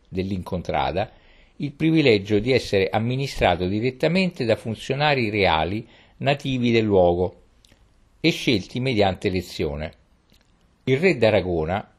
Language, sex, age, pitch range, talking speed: Italian, male, 50-69, 90-125 Hz, 100 wpm